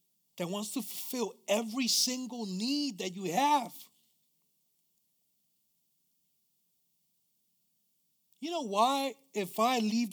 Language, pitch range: English, 180-215 Hz